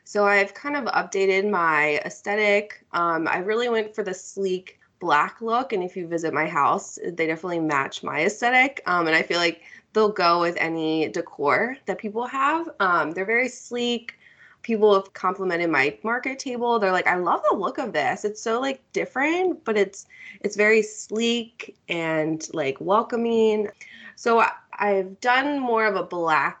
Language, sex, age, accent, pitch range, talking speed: English, female, 20-39, American, 180-235 Hz, 175 wpm